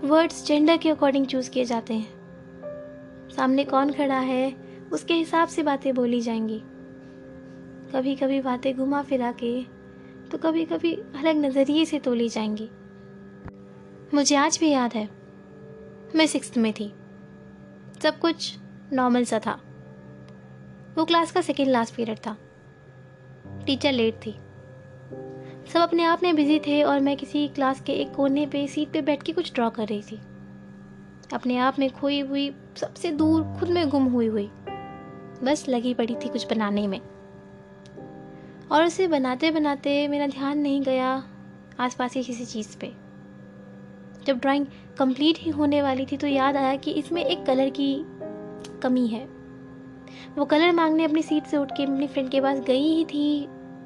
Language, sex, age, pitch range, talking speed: English, female, 20-39, 185-290 Hz, 135 wpm